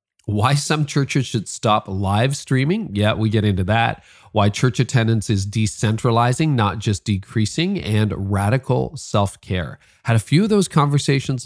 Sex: male